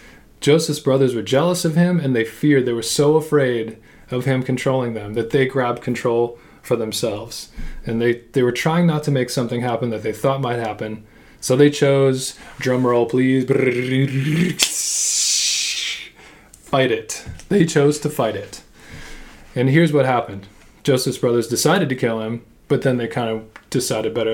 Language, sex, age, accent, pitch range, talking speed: English, male, 20-39, American, 115-135 Hz, 170 wpm